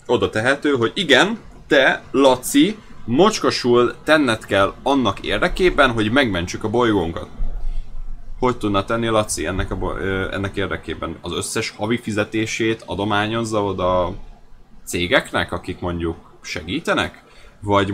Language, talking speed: Hungarian, 115 wpm